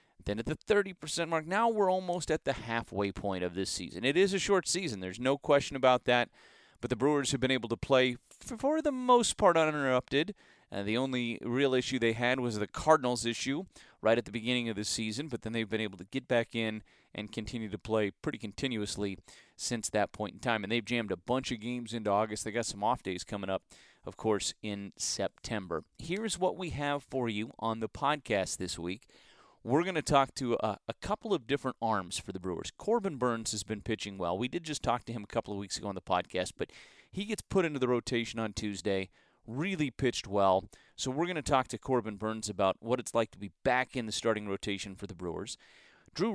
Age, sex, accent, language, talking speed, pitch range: 30-49, male, American, English, 230 wpm, 105-140 Hz